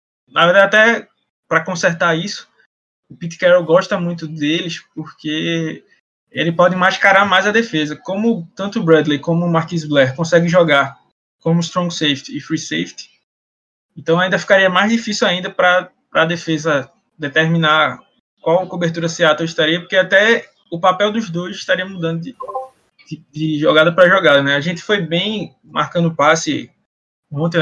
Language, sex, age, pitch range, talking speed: Portuguese, male, 20-39, 150-185 Hz, 155 wpm